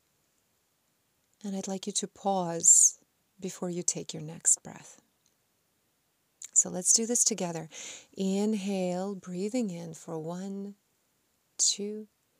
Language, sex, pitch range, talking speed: English, female, 165-205 Hz, 110 wpm